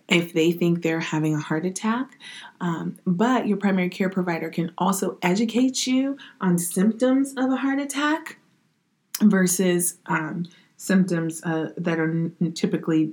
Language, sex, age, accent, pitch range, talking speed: English, female, 30-49, American, 175-210 Hz, 140 wpm